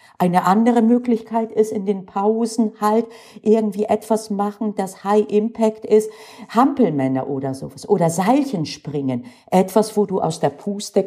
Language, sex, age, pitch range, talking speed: German, female, 50-69, 155-230 Hz, 145 wpm